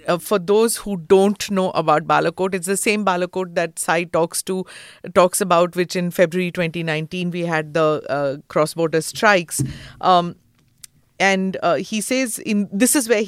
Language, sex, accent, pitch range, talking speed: English, female, Indian, 165-205 Hz, 170 wpm